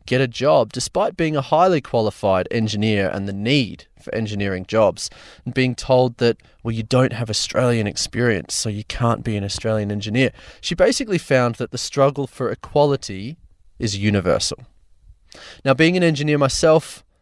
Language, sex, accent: English, male, Australian